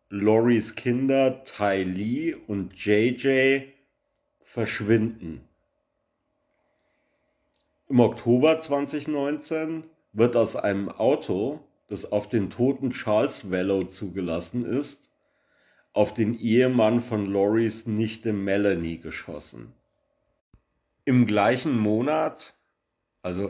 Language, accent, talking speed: German, German, 85 wpm